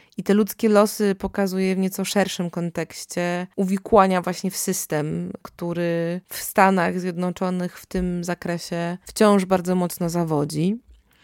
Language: Polish